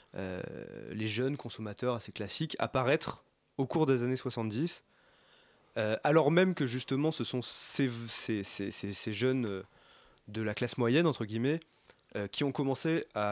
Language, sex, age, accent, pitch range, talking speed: French, male, 20-39, French, 110-145 Hz, 160 wpm